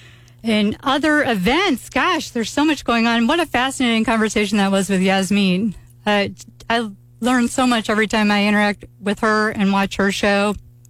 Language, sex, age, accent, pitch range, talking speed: English, female, 40-59, American, 195-235 Hz, 175 wpm